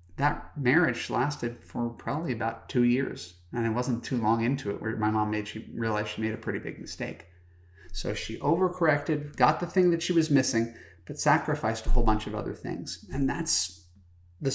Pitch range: 90-130 Hz